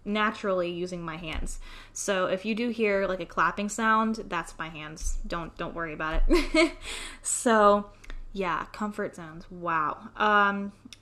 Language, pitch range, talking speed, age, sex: English, 175-220 Hz, 145 wpm, 10-29, female